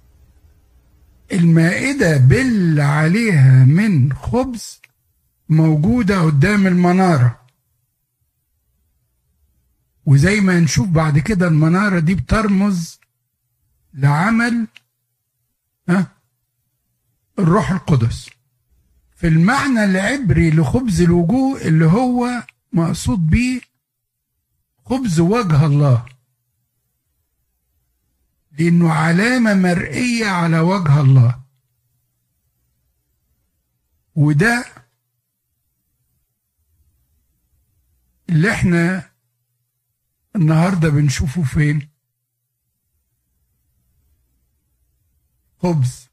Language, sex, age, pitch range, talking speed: Arabic, male, 60-79, 120-175 Hz, 55 wpm